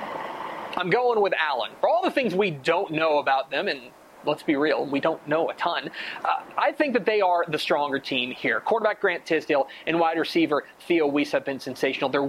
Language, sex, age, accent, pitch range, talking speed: English, male, 30-49, American, 145-220 Hz, 215 wpm